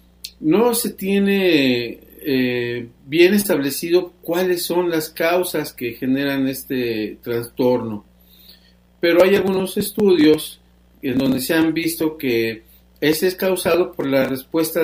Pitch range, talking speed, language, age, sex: 125-160 Hz, 120 wpm, Spanish, 50-69, male